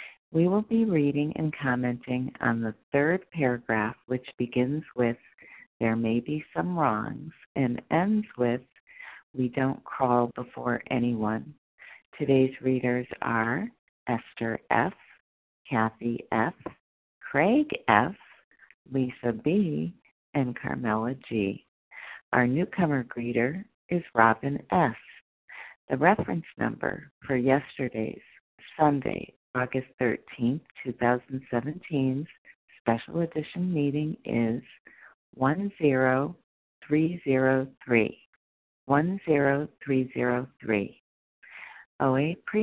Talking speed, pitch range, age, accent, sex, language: 85 wpm, 120-150 Hz, 50-69, American, female, English